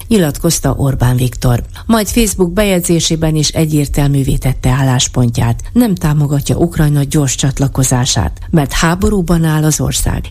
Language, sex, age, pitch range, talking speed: Hungarian, female, 50-69, 130-180 Hz, 115 wpm